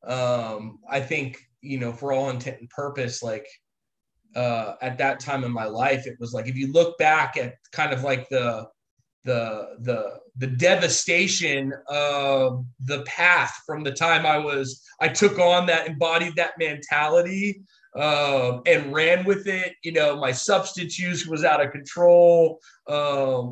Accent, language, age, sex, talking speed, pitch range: American, English, 20-39, male, 165 wpm, 135-175 Hz